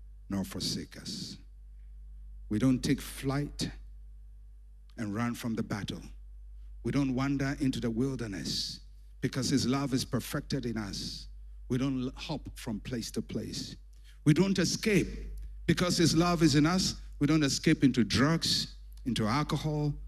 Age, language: 60-79, English